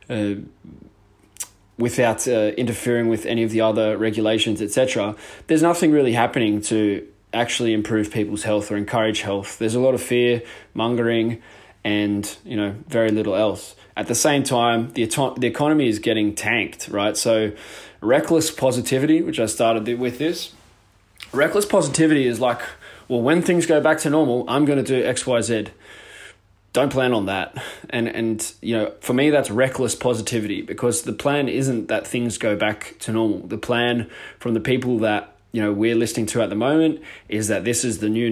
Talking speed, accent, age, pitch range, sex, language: 175 wpm, Australian, 20-39, 110-125 Hz, male, English